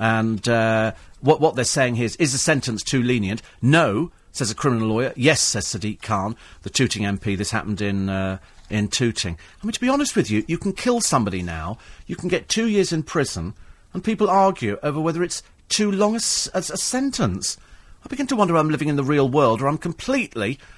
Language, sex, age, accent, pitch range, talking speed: English, male, 40-59, British, 110-180 Hz, 220 wpm